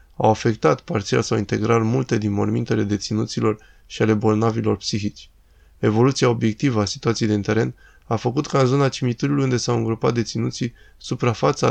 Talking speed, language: 155 wpm, Romanian